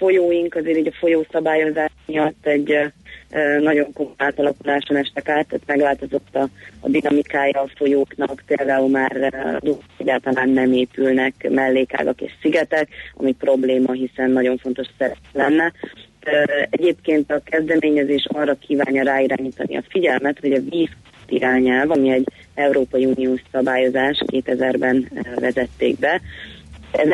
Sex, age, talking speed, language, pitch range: female, 30-49, 120 wpm, Hungarian, 130-145 Hz